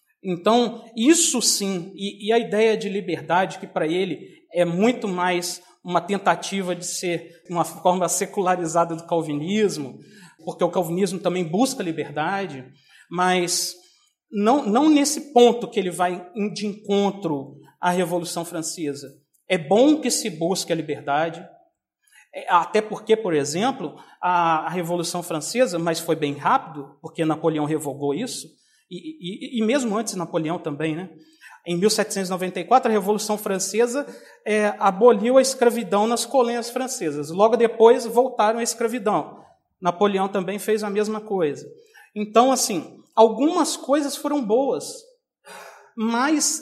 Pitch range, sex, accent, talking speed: 175-240 Hz, male, Brazilian, 135 wpm